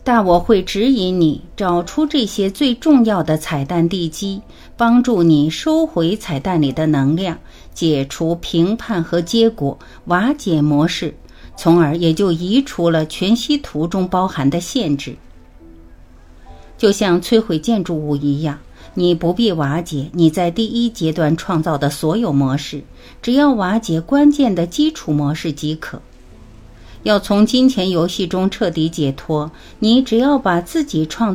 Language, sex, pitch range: Chinese, female, 145-220 Hz